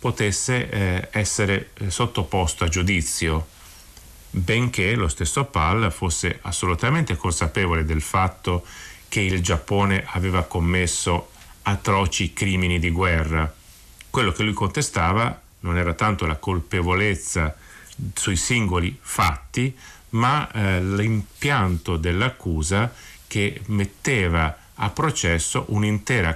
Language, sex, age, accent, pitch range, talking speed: Italian, male, 40-59, native, 85-105 Hz, 105 wpm